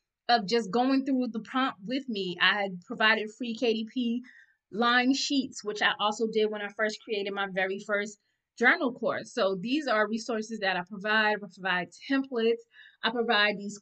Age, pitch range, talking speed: 20-39, 215-265 Hz, 180 wpm